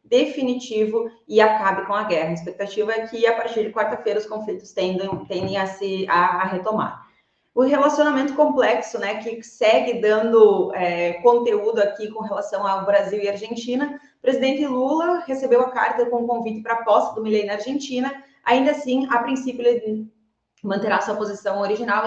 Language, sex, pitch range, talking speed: Portuguese, female, 210-250 Hz, 175 wpm